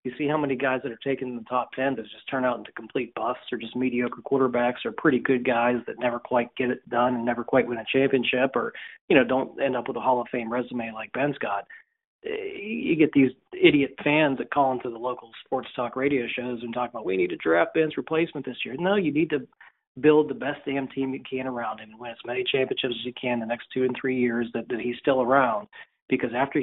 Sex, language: male, English